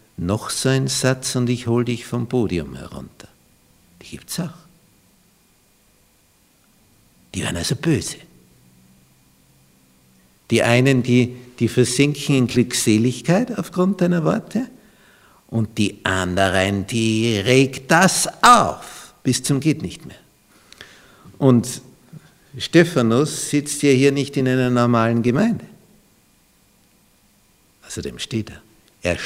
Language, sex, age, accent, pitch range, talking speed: German, male, 60-79, Austrian, 95-140 Hz, 115 wpm